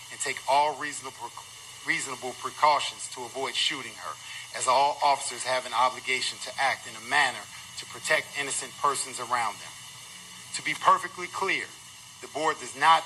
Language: English